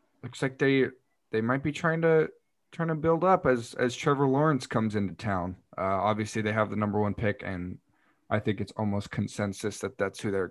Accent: American